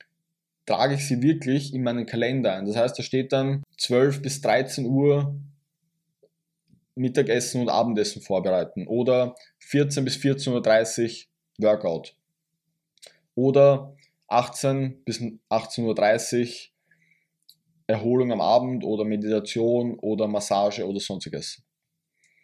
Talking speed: 105 wpm